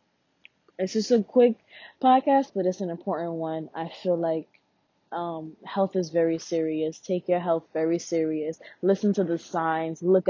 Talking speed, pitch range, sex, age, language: 165 wpm, 160-190 Hz, female, 20-39, English